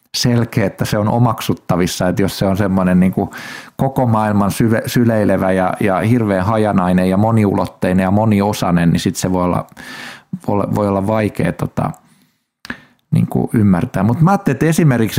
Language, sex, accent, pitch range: Finnish, male, native, 95-120 Hz